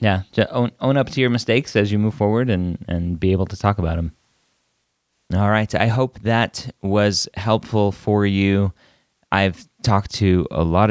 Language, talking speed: English, 180 wpm